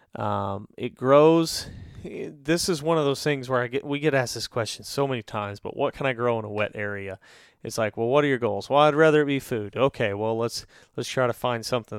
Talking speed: 250 wpm